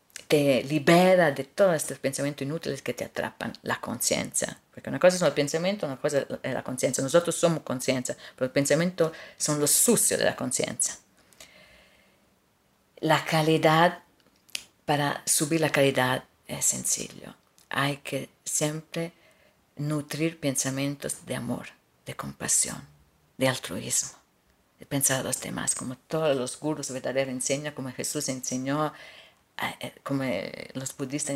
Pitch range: 135-160 Hz